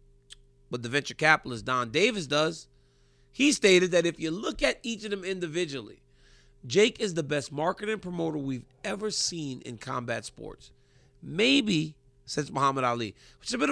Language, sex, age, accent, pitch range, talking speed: English, male, 30-49, American, 130-190 Hz, 170 wpm